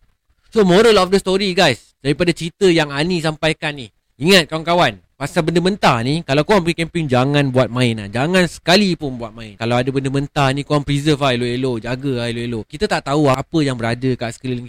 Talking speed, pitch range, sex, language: 210 wpm, 130-175 Hz, male, Malay